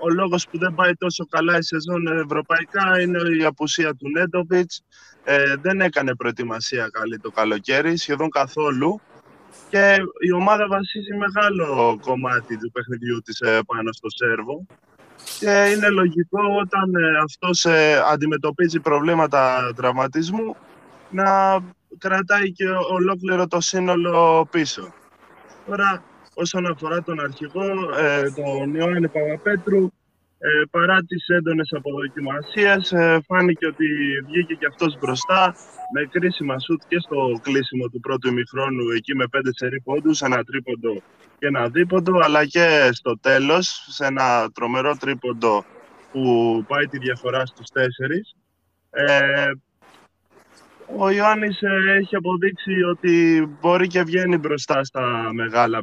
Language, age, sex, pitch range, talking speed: Greek, 20-39, male, 135-180 Hz, 125 wpm